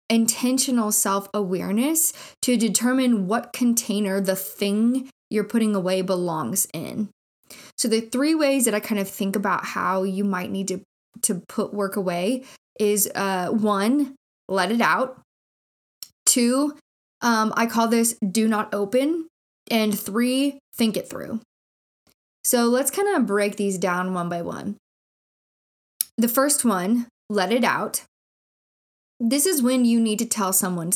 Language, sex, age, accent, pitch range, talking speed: English, female, 10-29, American, 200-245 Hz, 145 wpm